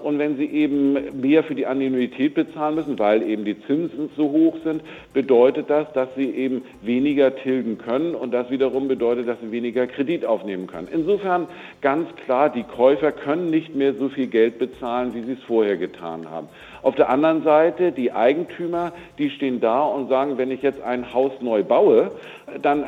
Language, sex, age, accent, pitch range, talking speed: German, male, 50-69, German, 120-145 Hz, 190 wpm